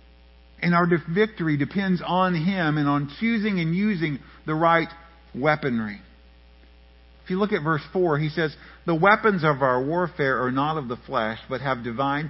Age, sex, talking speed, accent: 50-69, male, 170 wpm, American